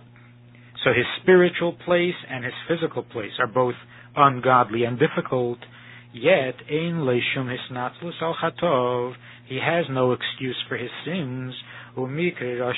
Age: 50-69